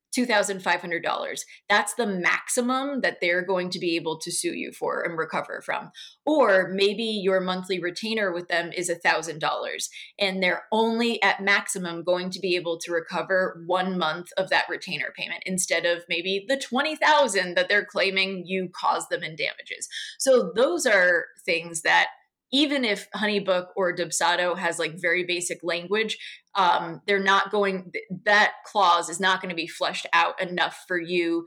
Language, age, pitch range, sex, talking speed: English, 20-39, 175-200 Hz, female, 165 wpm